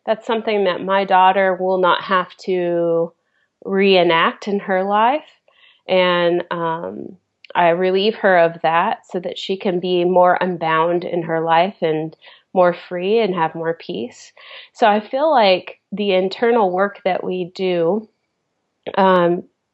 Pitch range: 175-210 Hz